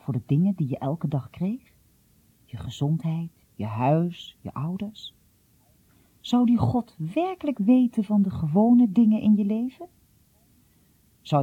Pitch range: 135-205 Hz